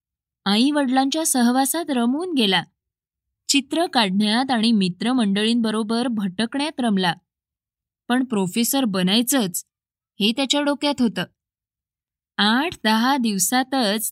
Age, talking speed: 20-39, 90 wpm